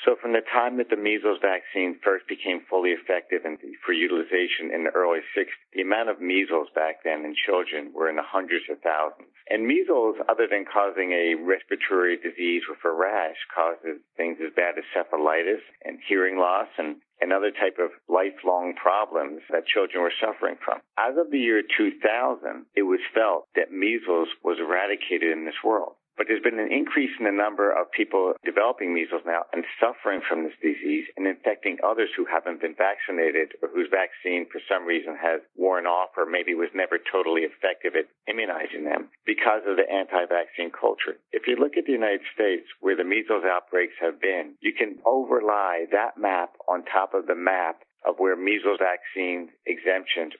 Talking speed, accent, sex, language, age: 185 wpm, American, male, English, 50-69